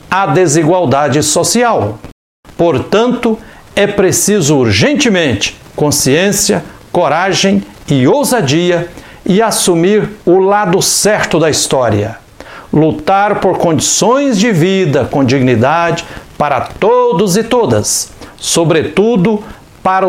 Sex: male